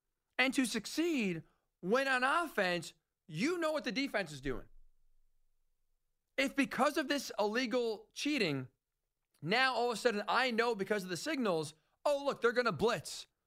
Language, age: English, 40-59